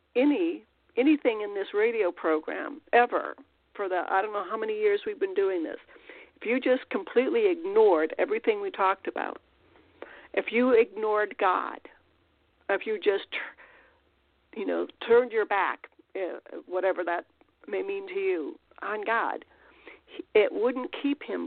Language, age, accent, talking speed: English, 60-79, American, 145 wpm